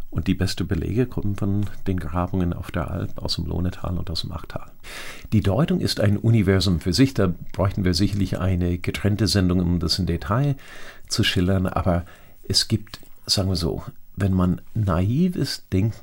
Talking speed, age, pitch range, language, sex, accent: 185 wpm, 50-69, 85-105 Hz, German, male, German